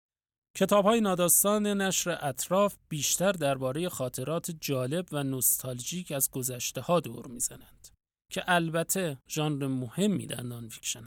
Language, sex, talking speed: Persian, male, 120 wpm